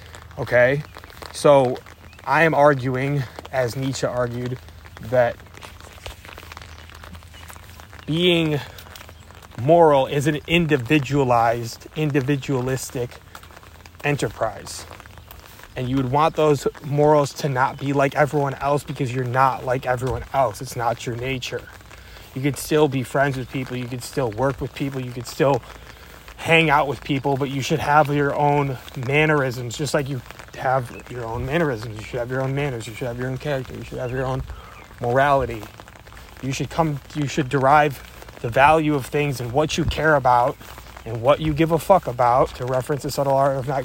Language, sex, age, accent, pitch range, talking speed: English, male, 20-39, American, 110-145 Hz, 165 wpm